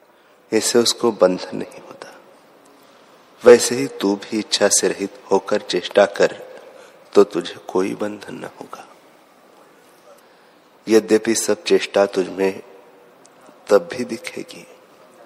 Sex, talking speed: male, 115 wpm